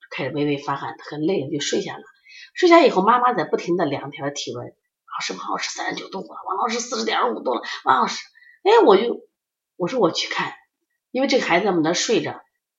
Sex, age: female, 30-49